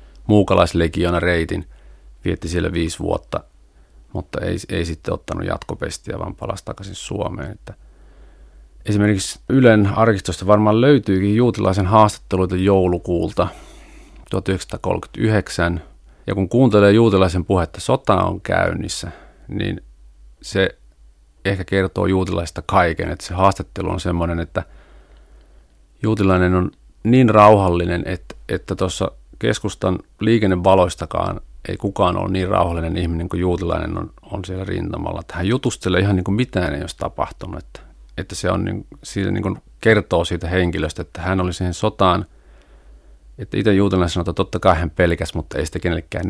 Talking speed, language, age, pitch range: 135 wpm, Finnish, 30-49, 80-100 Hz